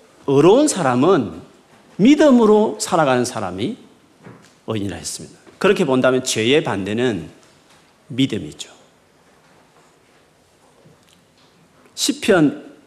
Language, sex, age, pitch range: Korean, male, 40-59, 125-205 Hz